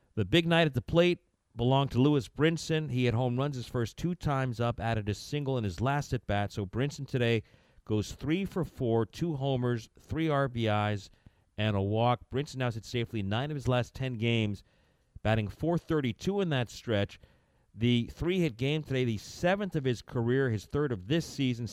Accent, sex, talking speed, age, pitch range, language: American, male, 195 wpm, 40-59, 100-135 Hz, English